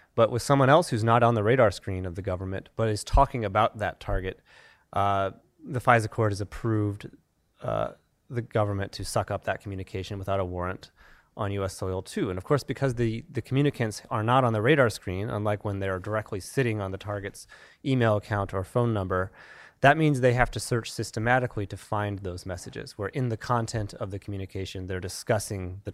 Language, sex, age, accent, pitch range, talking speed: English, male, 30-49, American, 100-130 Hz, 200 wpm